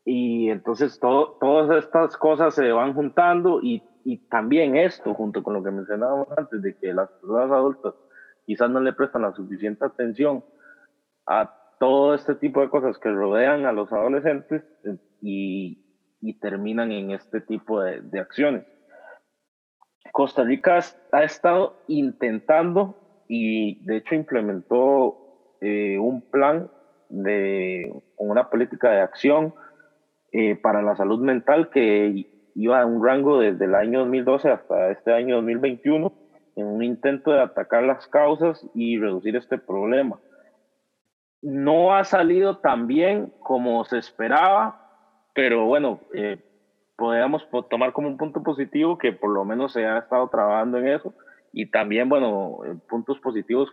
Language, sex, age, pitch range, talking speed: Spanish, male, 30-49, 110-150 Hz, 145 wpm